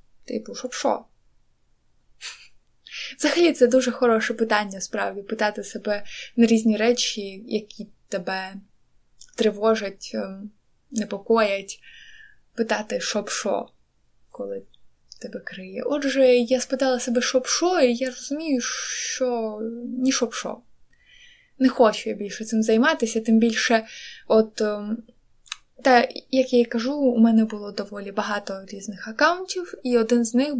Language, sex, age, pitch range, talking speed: Ukrainian, female, 20-39, 210-255 Hz, 120 wpm